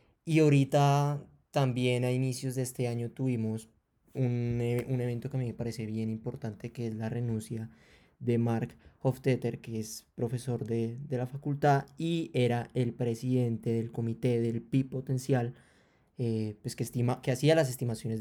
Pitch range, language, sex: 120-140 Hz, Spanish, male